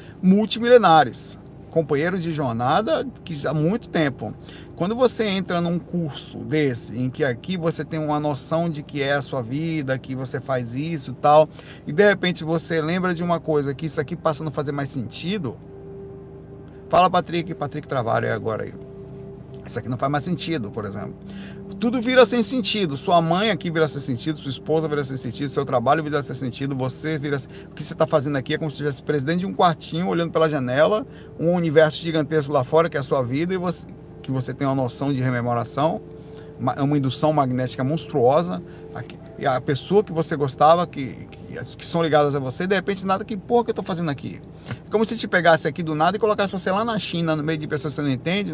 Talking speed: 210 wpm